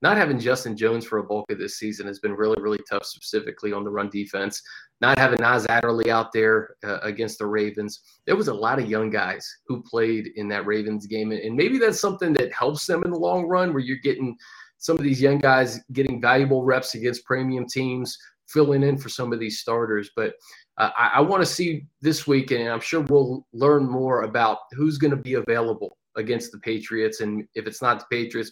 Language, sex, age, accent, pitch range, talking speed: English, male, 30-49, American, 110-135 Hz, 220 wpm